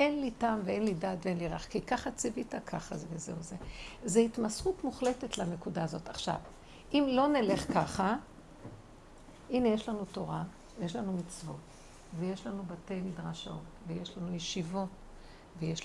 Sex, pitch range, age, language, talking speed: female, 180-240 Hz, 60-79, Hebrew, 165 wpm